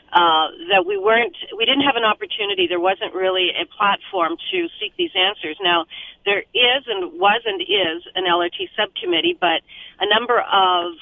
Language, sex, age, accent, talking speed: English, female, 40-59, American, 175 wpm